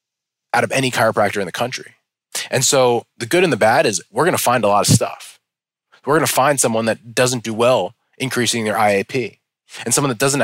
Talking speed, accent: 225 wpm, American